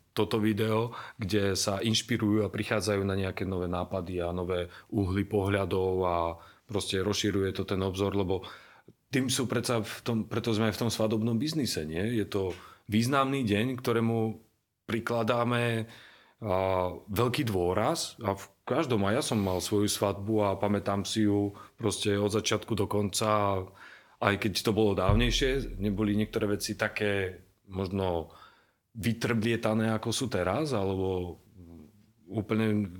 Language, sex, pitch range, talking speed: Slovak, male, 95-115 Hz, 135 wpm